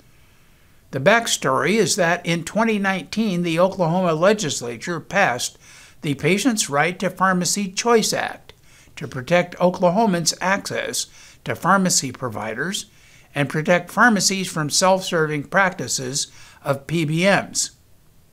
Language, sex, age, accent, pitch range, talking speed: English, male, 60-79, American, 140-190 Hz, 105 wpm